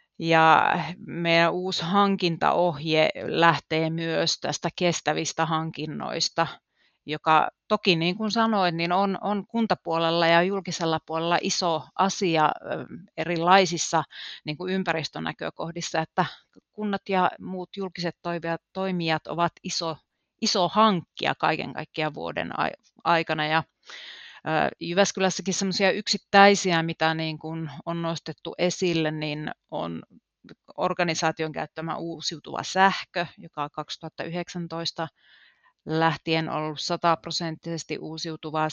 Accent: native